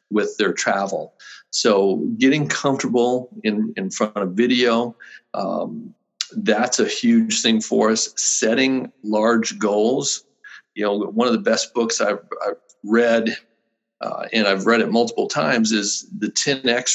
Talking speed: 150 wpm